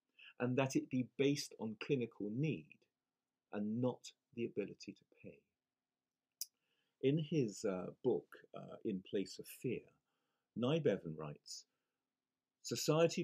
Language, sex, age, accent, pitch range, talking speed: English, male, 40-59, British, 110-165 Hz, 120 wpm